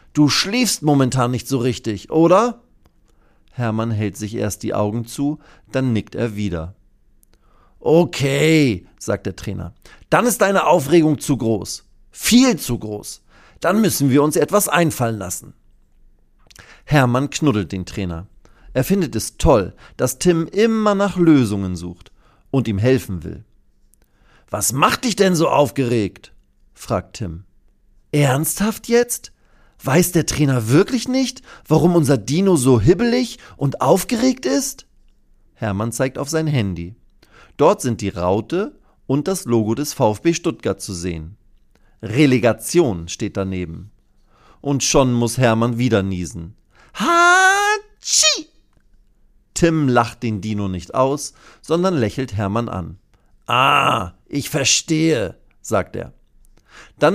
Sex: male